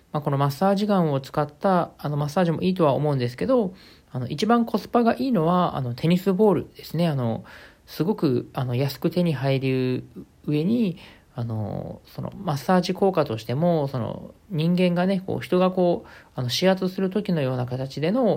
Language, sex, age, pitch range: Japanese, male, 40-59, 125-175 Hz